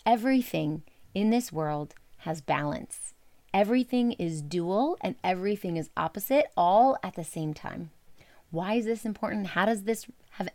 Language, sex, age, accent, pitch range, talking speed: English, female, 30-49, American, 170-230 Hz, 150 wpm